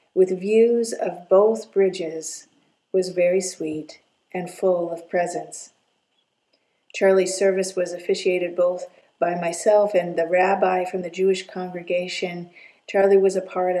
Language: English